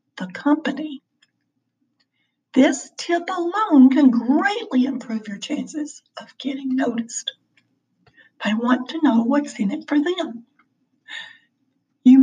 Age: 60-79